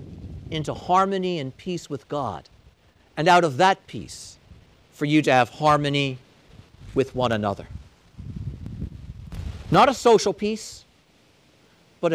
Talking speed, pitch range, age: 120 wpm, 120-195 Hz, 50-69